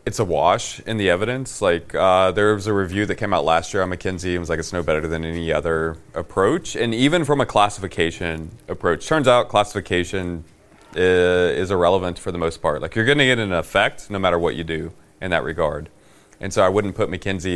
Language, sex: English, male